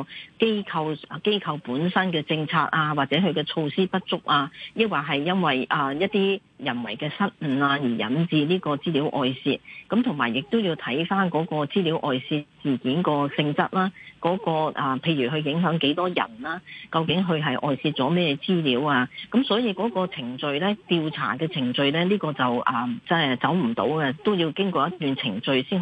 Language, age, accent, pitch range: Chinese, 40-59, native, 140-185 Hz